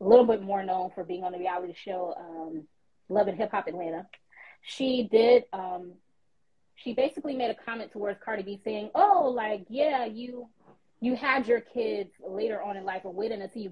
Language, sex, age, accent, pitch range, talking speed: English, female, 20-39, American, 185-240 Hz, 195 wpm